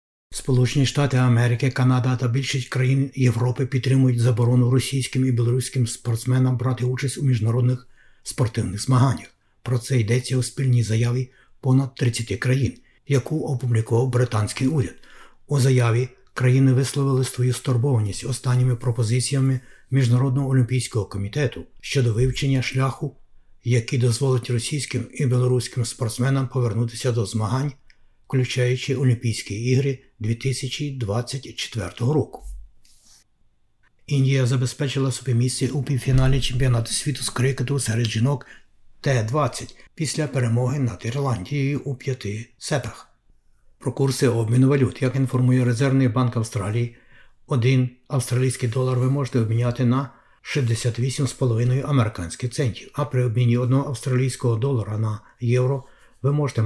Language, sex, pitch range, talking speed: Ukrainian, male, 120-135 Hz, 115 wpm